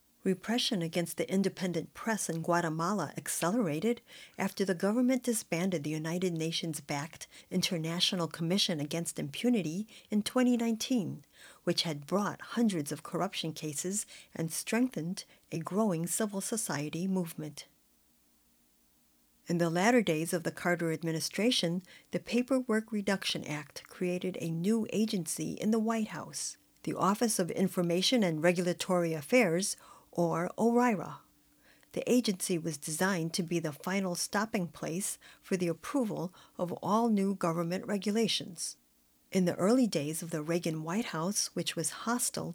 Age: 50-69